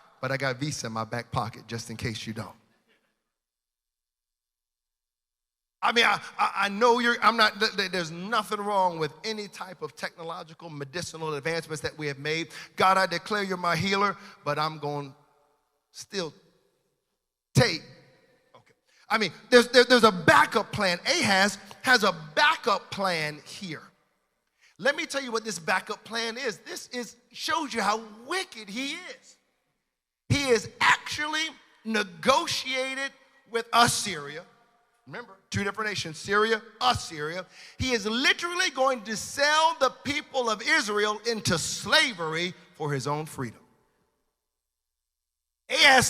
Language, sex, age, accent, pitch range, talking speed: English, male, 40-59, American, 150-245 Hz, 140 wpm